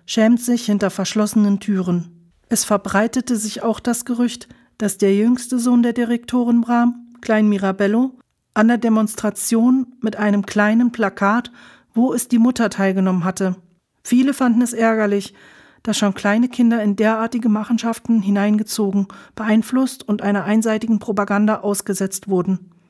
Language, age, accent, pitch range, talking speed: German, 40-59, German, 200-235 Hz, 135 wpm